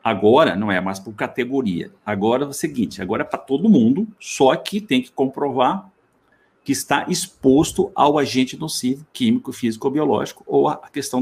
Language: Portuguese